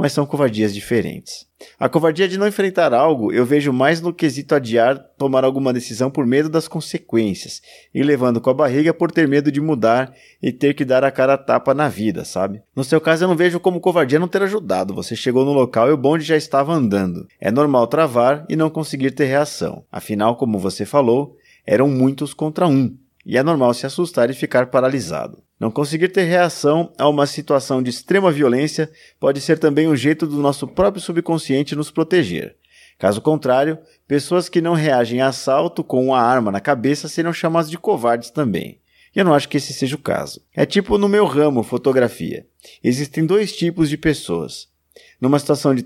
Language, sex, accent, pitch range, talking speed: Portuguese, male, Brazilian, 130-165 Hz, 200 wpm